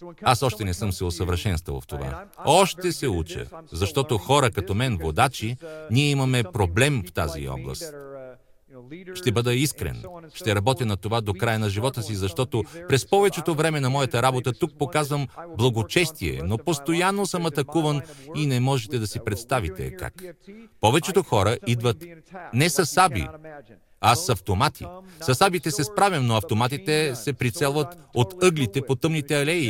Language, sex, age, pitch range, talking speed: Russian, male, 40-59, 105-165 Hz, 155 wpm